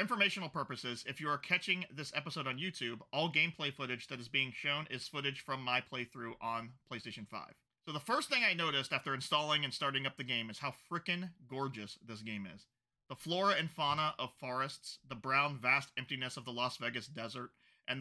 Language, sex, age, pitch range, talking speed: English, male, 30-49, 120-145 Hz, 205 wpm